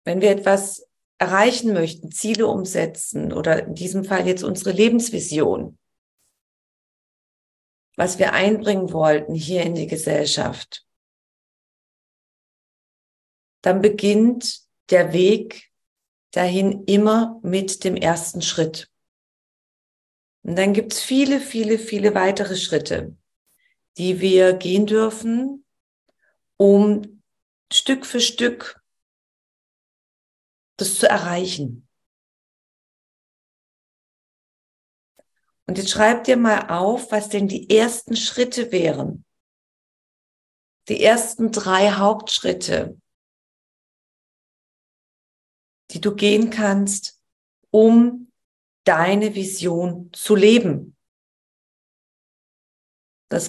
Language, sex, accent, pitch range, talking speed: German, female, German, 180-220 Hz, 85 wpm